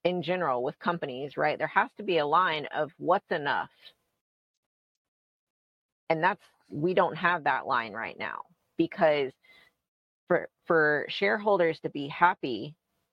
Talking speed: 135 wpm